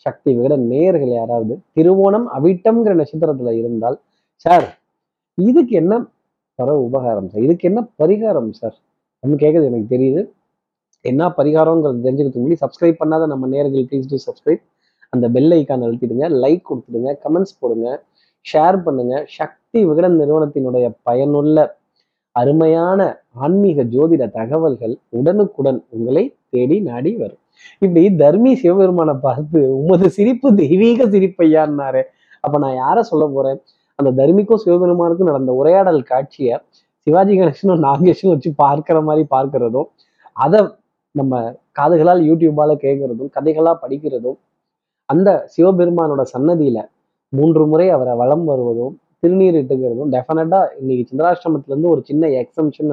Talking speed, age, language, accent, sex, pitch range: 115 wpm, 30-49, Tamil, native, male, 130-175 Hz